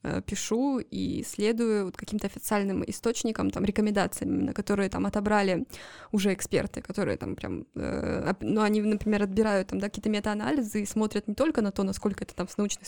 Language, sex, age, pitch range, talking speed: Russian, female, 20-39, 195-220 Hz, 170 wpm